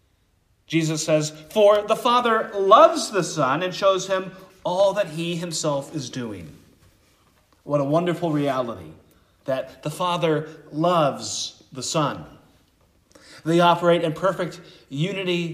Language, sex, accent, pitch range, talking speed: English, male, American, 130-180 Hz, 125 wpm